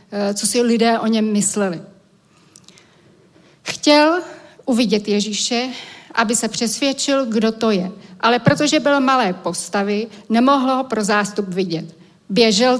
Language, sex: Czech, female